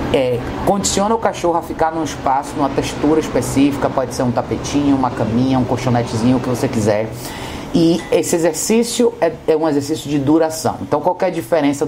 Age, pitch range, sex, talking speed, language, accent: 30-49, 130-155 Hz, male, 185 wpm, Portuguese, Brazilian